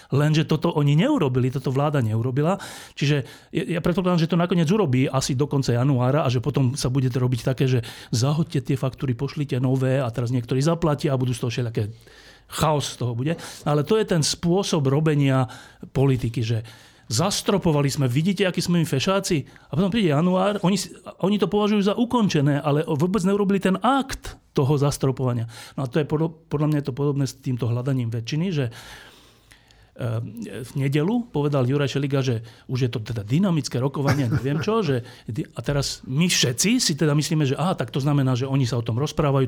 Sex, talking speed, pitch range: male, 185 wpm, 125-160 Hz